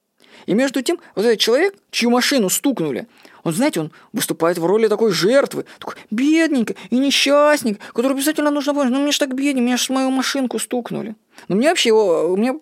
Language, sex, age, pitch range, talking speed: Russian, female, 20-39, 195-275 Hz, 195 wpm